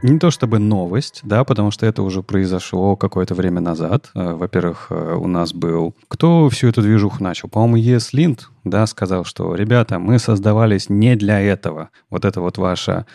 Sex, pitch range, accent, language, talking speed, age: male, 90-115 Hz, native, Russian, 170 wpm, 30-49